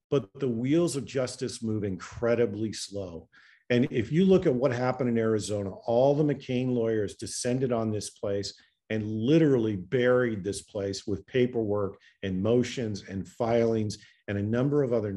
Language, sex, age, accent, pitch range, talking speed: English, male, 50-69, American, 105-135 Hz, 160 wpm